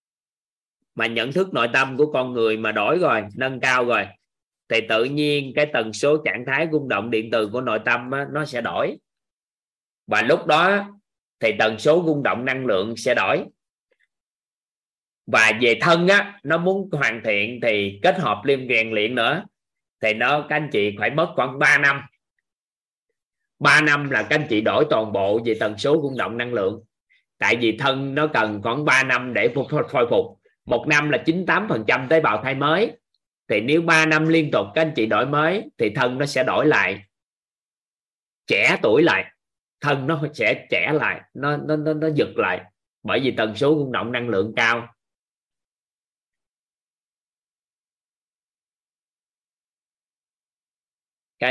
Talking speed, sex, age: 170 wpm, male, 20-39